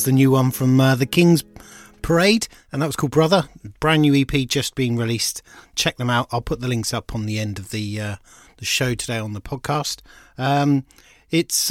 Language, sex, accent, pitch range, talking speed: English, male, British, 115-145 Hz, 210 wpm